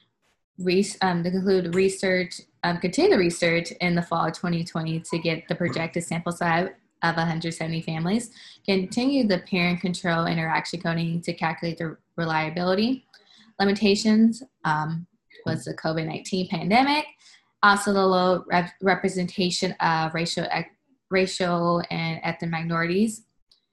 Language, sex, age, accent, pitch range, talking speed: English, female, 20-39, American, 165-190 Hz, 120 wpm